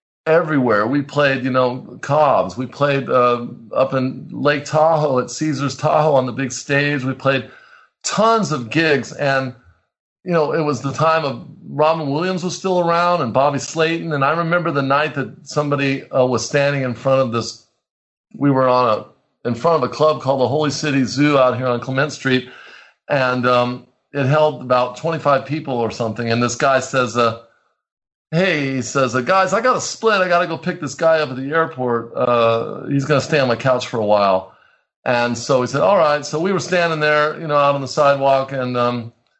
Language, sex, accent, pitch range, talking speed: English, male, American, 125-160 Hz, 210 wpm